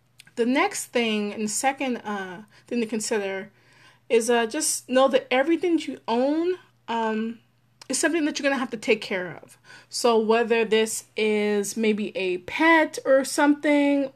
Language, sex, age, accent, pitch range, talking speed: English, female, 20-39, American, 210-255 Hz, 160 wpm